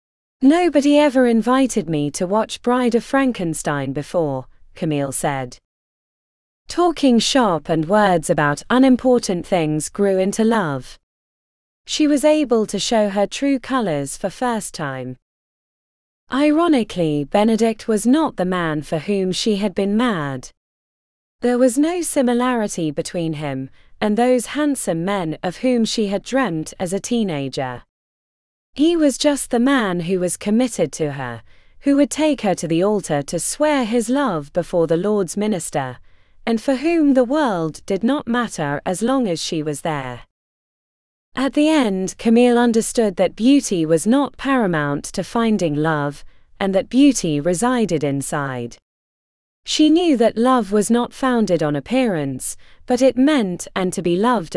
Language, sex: Spanish, female